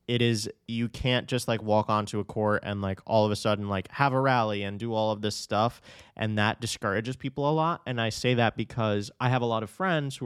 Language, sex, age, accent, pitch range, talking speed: English, male, 20-39, American, 105-130 Hz, 255 wpm